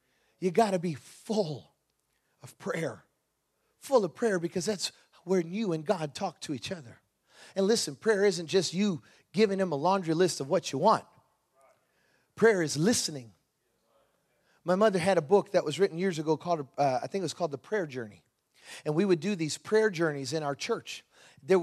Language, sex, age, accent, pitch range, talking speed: English, male, 40-59, American, 135-185 Hz, 190 wpm